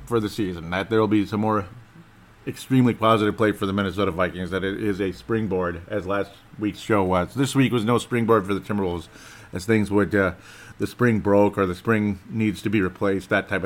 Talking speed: 220 wpm